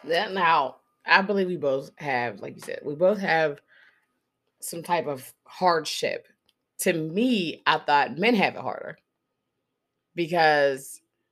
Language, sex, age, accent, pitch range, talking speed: English, female, 20-39, American, 150-210 Hz, 140 wpm